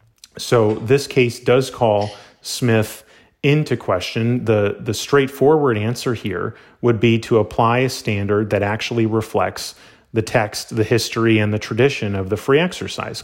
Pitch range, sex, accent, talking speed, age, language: 105-125 Hz, male, American, 150 wpm, 30-49, English